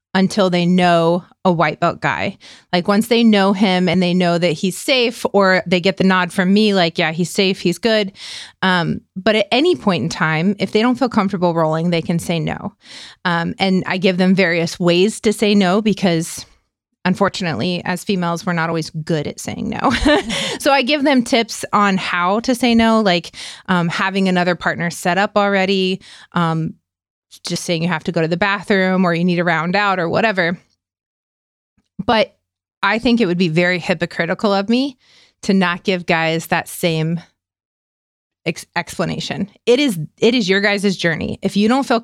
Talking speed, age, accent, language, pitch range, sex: 190 wpm, 30-49, American, English, 175-225 Hz, female